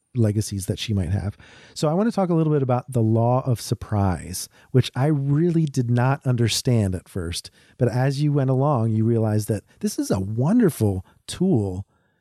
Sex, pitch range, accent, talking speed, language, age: male, 105-135 Hz, American, 190 wpm, English, 40-59